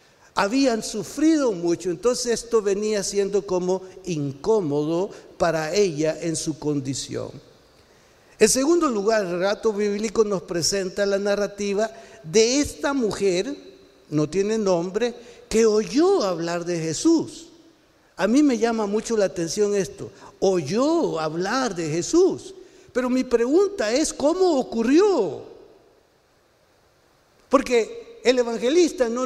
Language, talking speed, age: Spanish, 115 wpm, 60-79